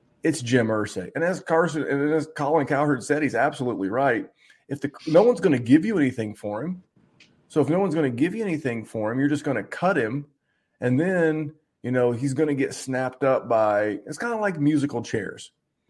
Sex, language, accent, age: male, English, American, 30-49